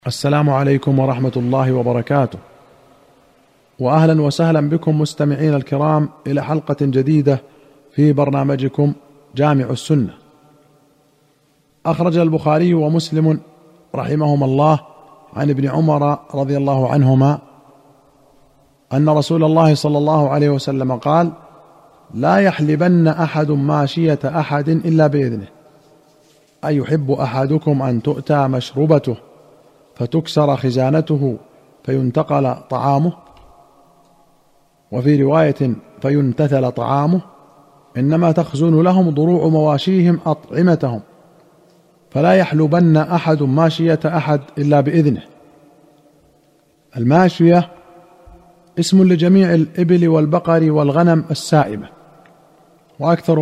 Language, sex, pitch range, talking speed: Arabic, male, 140-160 Hz, 90 wpm